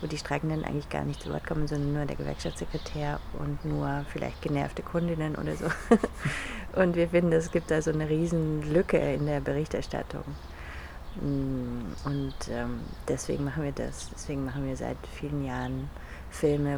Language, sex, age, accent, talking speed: German, female, 30-49, German, 160 wpm